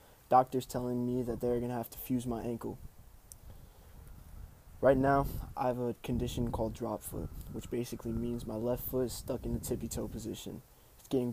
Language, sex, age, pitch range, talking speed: English, male, 20-39, 110-125 Hz, 185 wpm